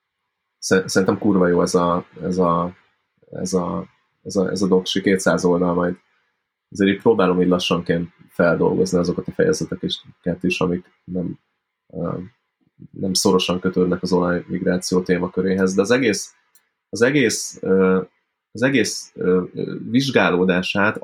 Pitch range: 85-95 Hz